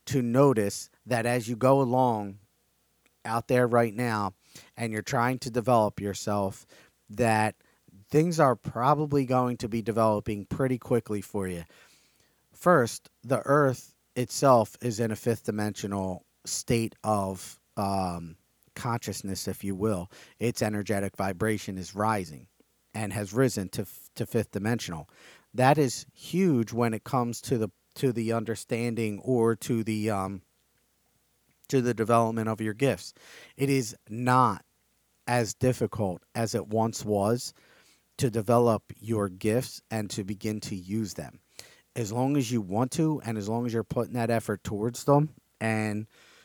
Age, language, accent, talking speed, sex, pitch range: 40-59, English, American, 145 wpm, male, 105-125 Hz